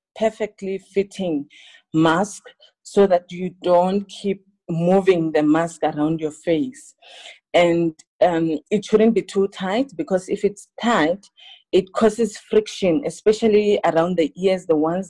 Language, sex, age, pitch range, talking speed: English, female, 40-59, 165-205 Hz, 135 wpm